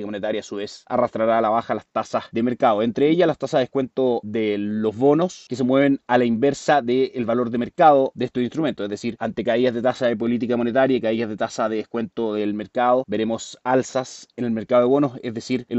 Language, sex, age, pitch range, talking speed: Spanish, male, 30-49, 115-135 Hz, 230 wpm